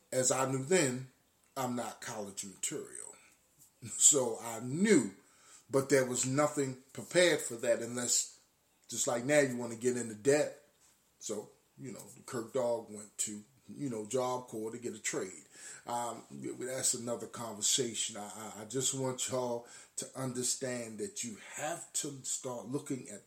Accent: American